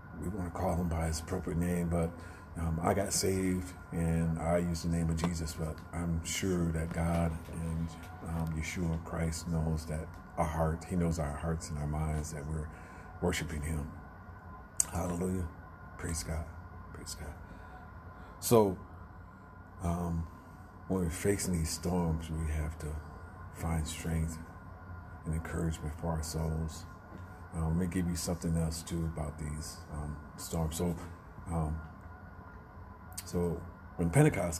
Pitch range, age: 80-90 Hz, 40-59